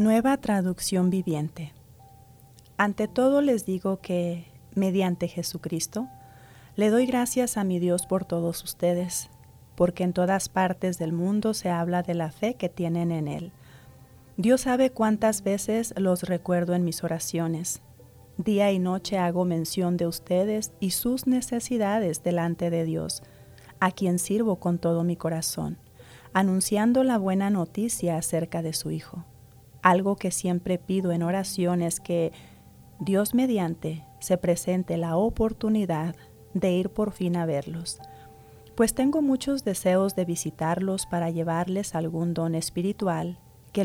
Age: 40-59